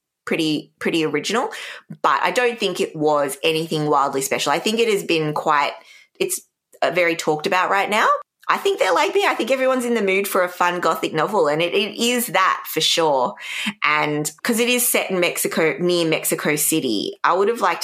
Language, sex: English, female